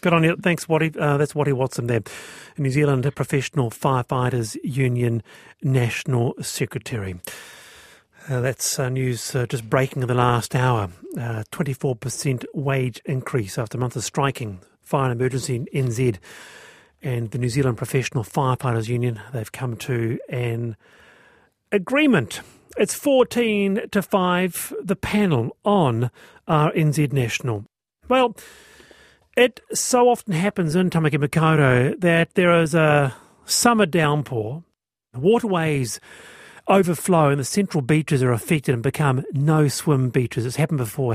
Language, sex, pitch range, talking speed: English, male, 125-165 Hz, 135 wpm